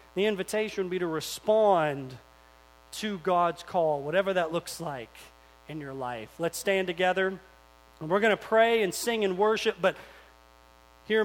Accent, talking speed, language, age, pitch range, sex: American, 160 wpm, English, 40-59, 140-215 Hz, male